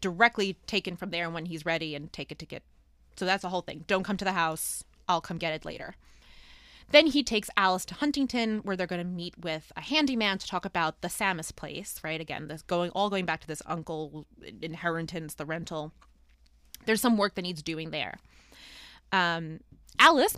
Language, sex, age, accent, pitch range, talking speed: English, female, 20-39, American, 155-200 Hz, 200 wpm